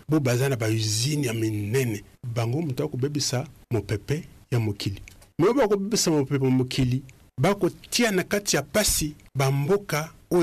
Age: 50-69